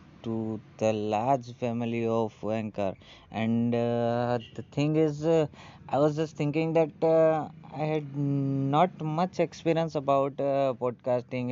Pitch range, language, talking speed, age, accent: 125-155 Hz, Hindi, 135 wpm, 20-39, native